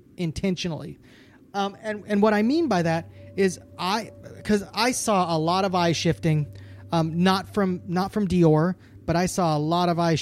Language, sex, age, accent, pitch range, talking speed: English, male, 20-39, American, 135-185 Hz, 190 wpm